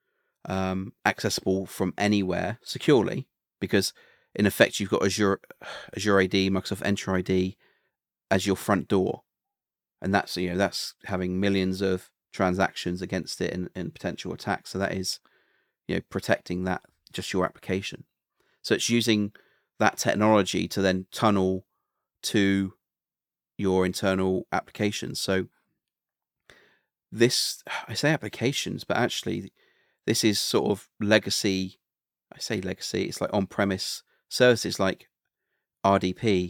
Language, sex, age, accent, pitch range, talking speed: English, male, 30-49, British, 95-105 Hz, 130 wpm